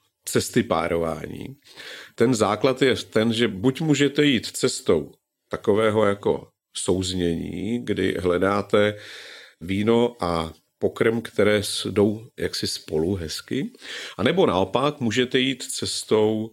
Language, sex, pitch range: Czech, male, 95-125 Hz